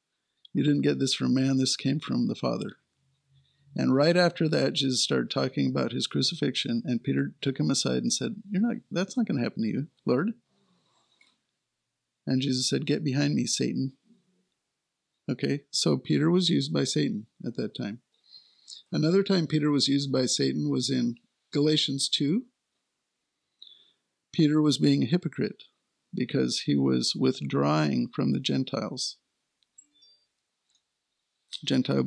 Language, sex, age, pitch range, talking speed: English, male, 50-69, 130-170 Hz, 150 wpm